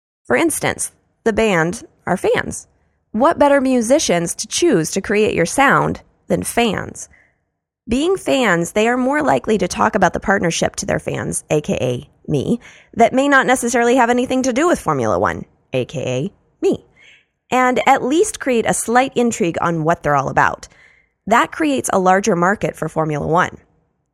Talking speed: 165 wpm